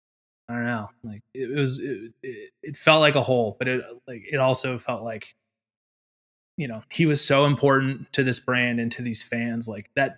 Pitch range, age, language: 115-140 Hz, 20-39, English